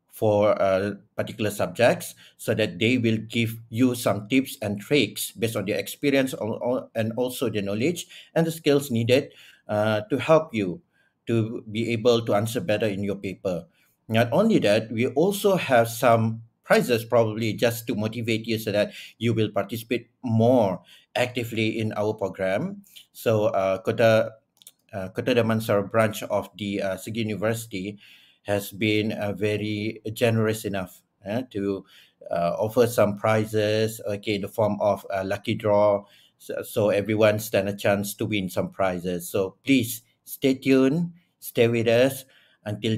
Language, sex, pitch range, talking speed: Malay, male, 105-120 Hz, 155 wpm